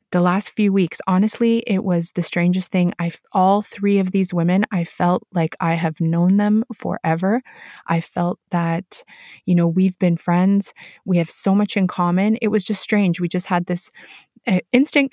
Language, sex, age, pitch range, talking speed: English, female, 20-39, 165-200 Hz, 190 wpm